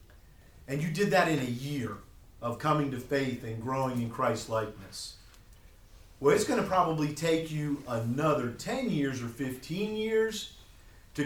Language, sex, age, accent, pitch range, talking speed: English, male, 40-59, American, 115-165 Hz, 160 wpm